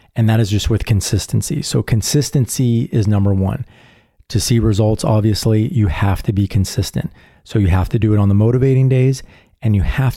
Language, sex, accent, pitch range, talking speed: English, male, American, 100-115 Hz, 195 wpm